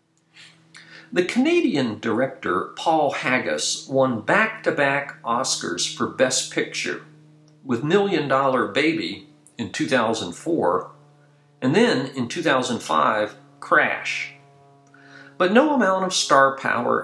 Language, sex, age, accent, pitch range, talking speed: English, male, 50-69, American, 120-165 Hz, 100 wpm